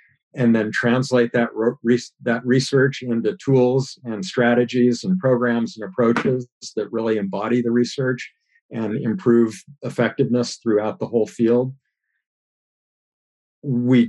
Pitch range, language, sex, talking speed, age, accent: 115-135 Hz, English, male, 115 wpm, 50-69, American